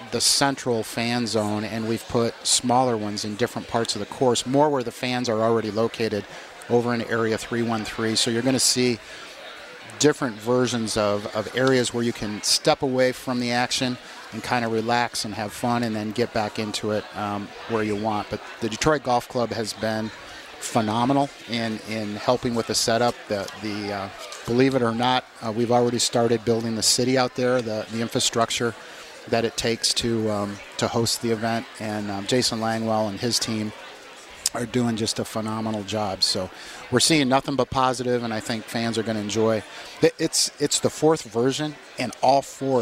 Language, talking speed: English, 195 wpm